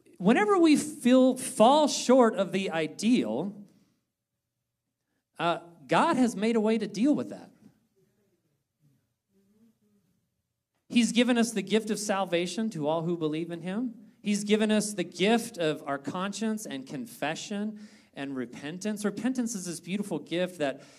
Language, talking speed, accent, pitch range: English, 140 wpm, American, 160-230 Hz